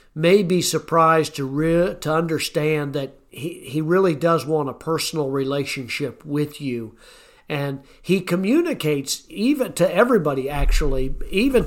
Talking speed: 135 wpm